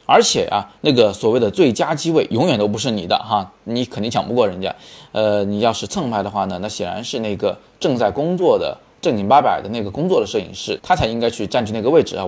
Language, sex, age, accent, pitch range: Chinese, male, 20-39, native, 105-155 Hz